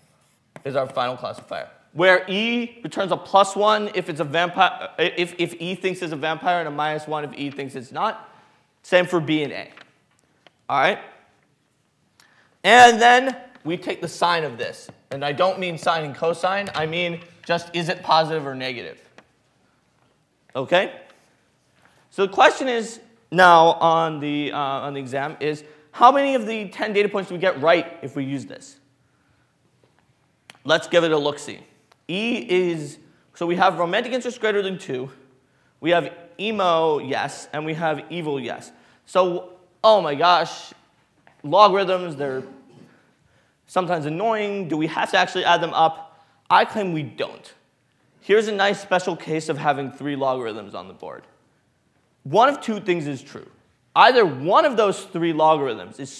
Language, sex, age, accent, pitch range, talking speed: English, male, 20-39, American, 155-195 Hz, 165 wpm